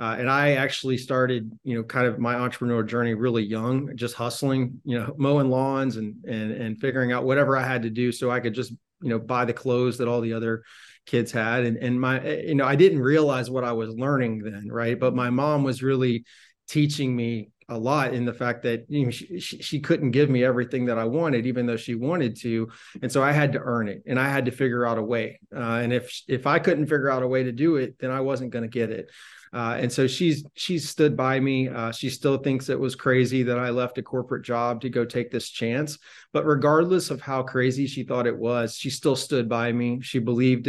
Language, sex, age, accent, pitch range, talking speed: English, male, 30-49, American, 120-135 Hz, 245 wpm